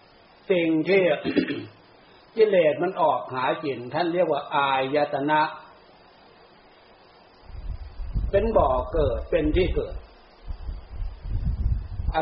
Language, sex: Thai, male